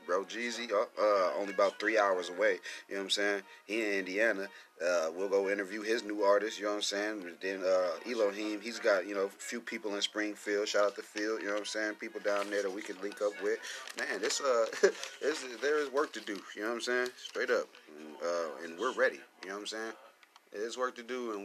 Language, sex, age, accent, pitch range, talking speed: English, male, 30-49, American, 100-115 Hz, 250 wpm